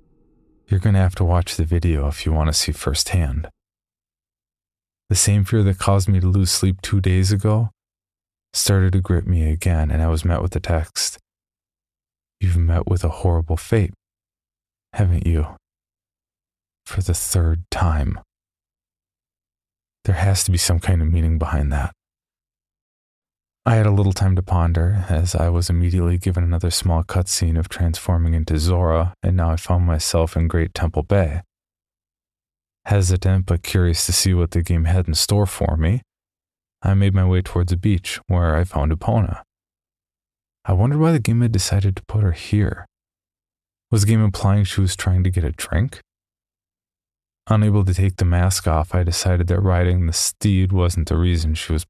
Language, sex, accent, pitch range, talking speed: English, male, American, 85-100 Hz, 175 wpm